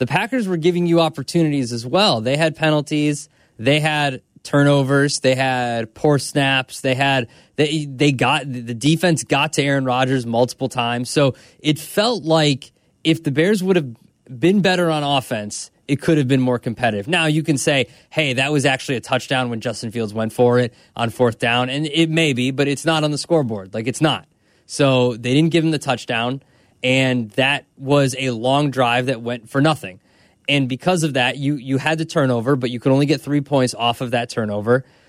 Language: English